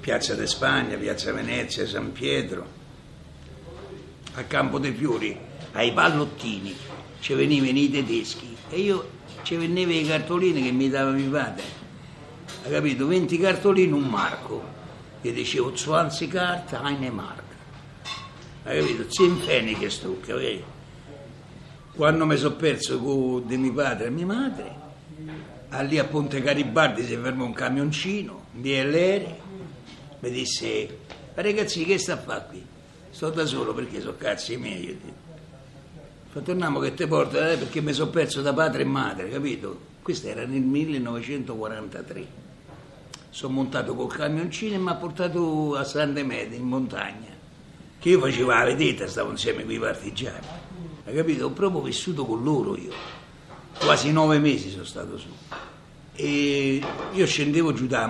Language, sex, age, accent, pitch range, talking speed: Italian, male, 60-79, native, 135-170 Hz, 155 wpm